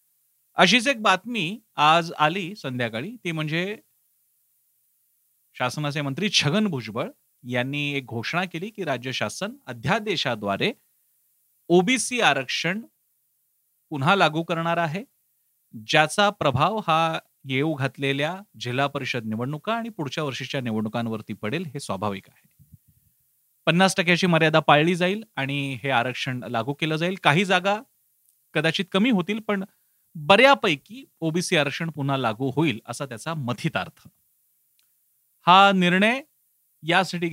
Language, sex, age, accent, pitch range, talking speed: Marathi, male, 40-59, native, 125-180 Hz, 75 wpm